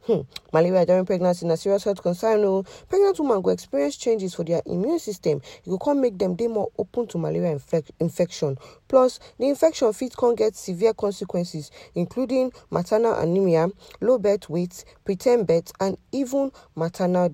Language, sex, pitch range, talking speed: English, female, 155-210 Hz, 175 wpm